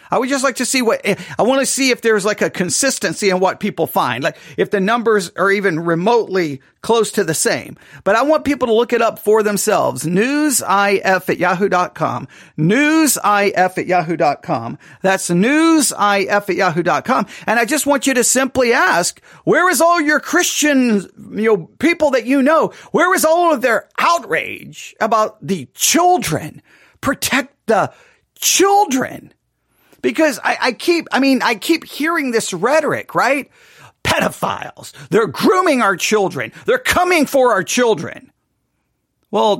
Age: 40-59